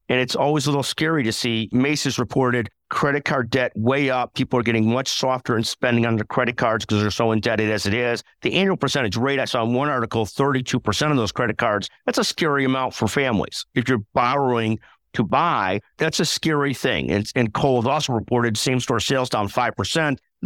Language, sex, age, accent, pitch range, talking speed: English, male, 50-69, American, 115-145 Hz, 210 wpm